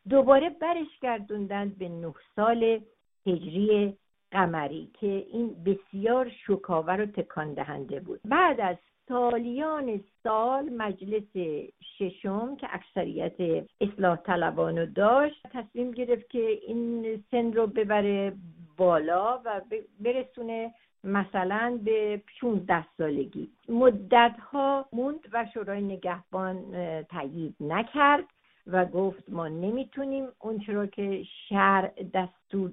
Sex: female